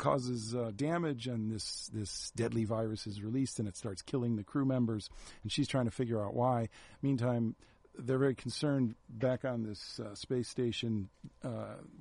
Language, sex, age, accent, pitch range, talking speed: English, male, 50-69, American, 105-125 Hz, 175 wpm